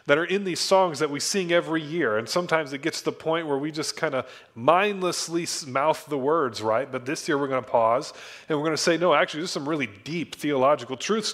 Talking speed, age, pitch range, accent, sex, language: 250 wpm, 30-49, 140-190 Hz, American, male, English